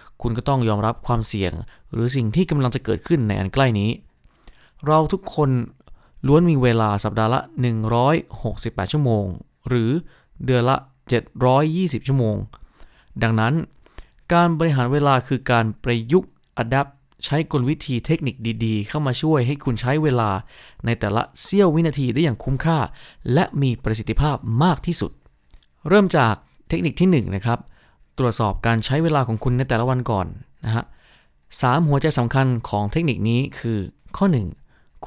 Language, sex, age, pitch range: Thai, male, 20-39, 110-140 Hz